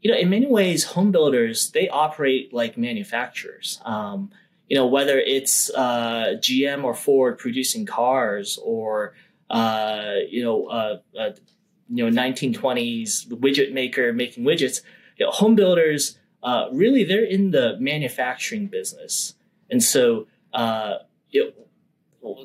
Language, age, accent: English, 30-49, American